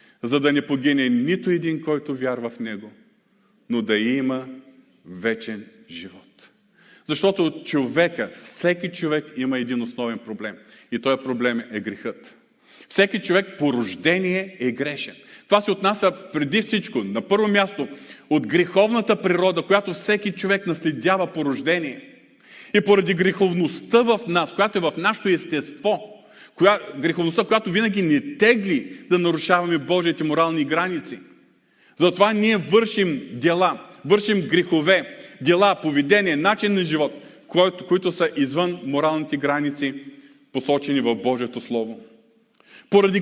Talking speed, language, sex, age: 130 wpm, Bulgarian, male, 40-59